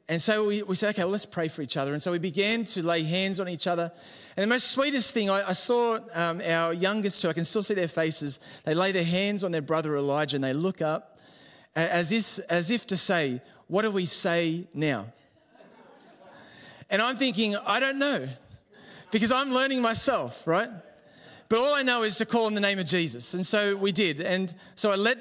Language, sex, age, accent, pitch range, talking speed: English, male, 30-49, Australian, 165-220 Hz, 220 wpm